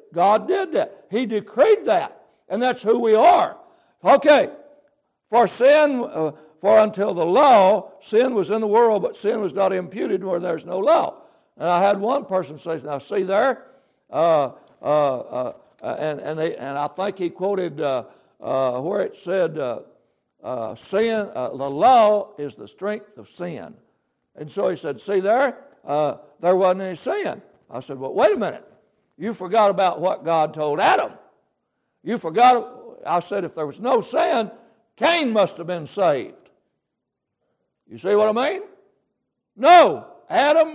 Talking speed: 170 wpm